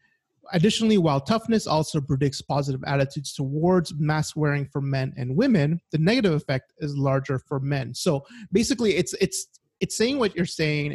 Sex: male